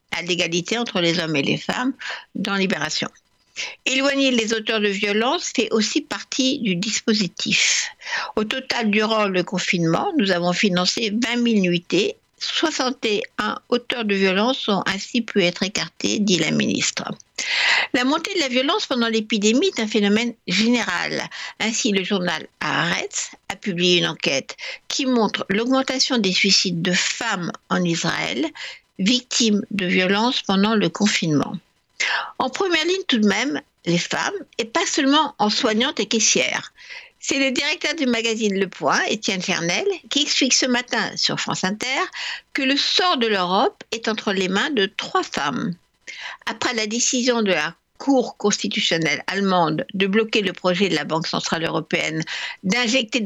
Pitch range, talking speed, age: 185-250 Hz, 155 wpm, 60-79